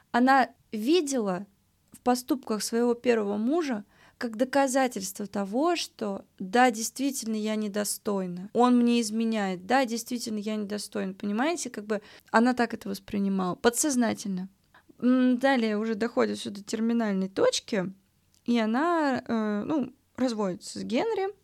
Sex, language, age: female, Russian, 20-39